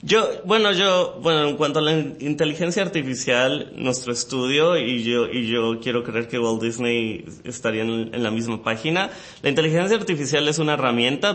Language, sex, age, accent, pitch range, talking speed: Spanish, male, 30-49, Mexican, 115-150 Hz, 170 wpm